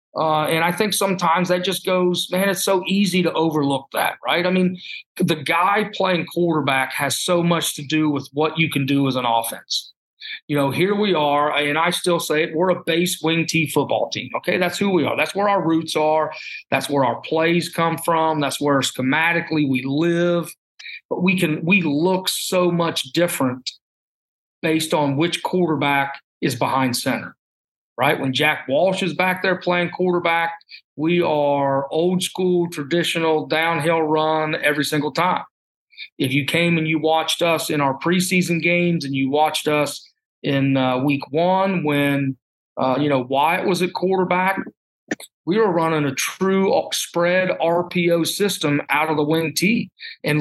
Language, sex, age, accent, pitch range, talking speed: English, male, 40-59, American, 145-180 Hz, 175 wpm